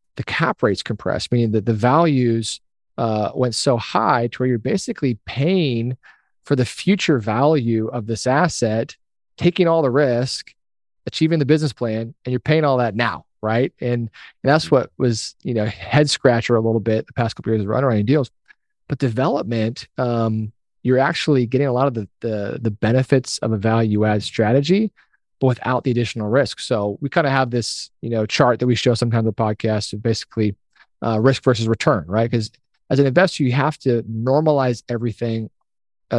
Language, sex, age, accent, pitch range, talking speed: English, male, 30-49, American, 110-135 Hz, 190 wpm